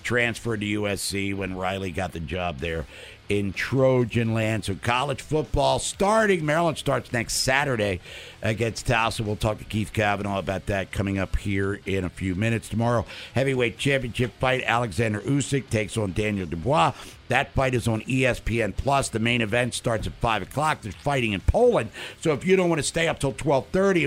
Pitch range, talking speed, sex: 105-140 Hz, 180 wpm, male